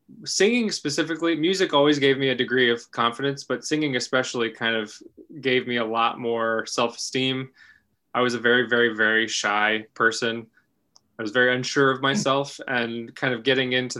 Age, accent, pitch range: 20-39, American, 115-130 Hz